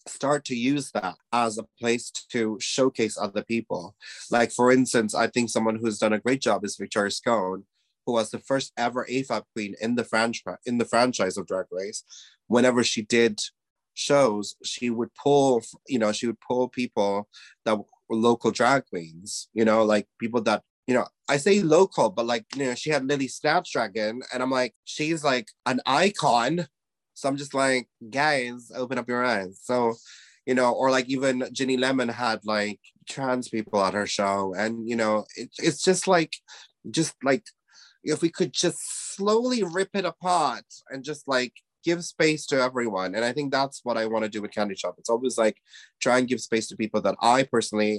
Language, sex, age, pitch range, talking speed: English, male, 30-49, 105-135 Hz, 195 wpm